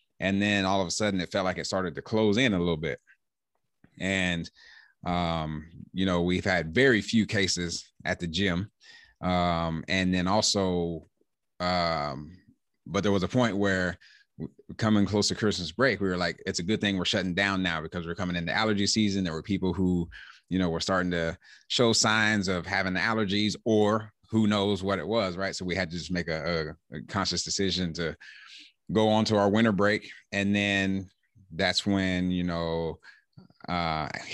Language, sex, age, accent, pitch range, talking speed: English, male, 30-49, American, 85-100 Hz, 190 wpm